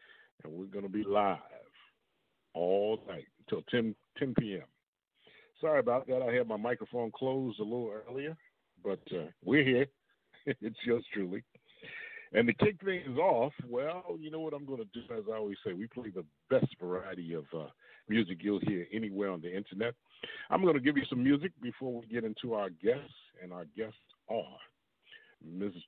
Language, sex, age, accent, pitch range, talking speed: English, male, 50-69, American, 105-135 Hz, 185 wpm